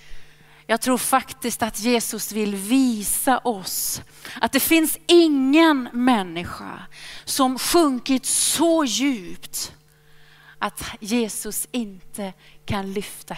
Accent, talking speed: native, 100 wpm